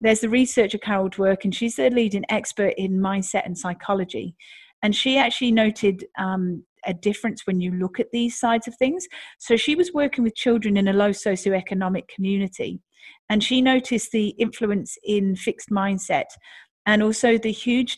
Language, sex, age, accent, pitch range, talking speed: English, female, 40-59, British, 190-240 Hz, 175 wpm